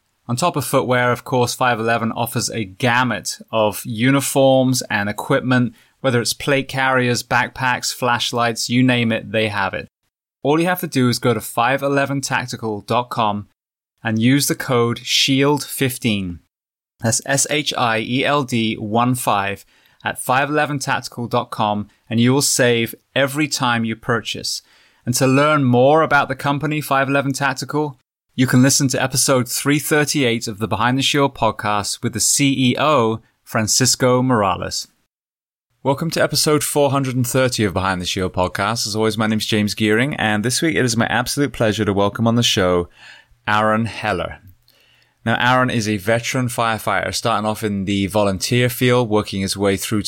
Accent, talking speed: British, 150 wpm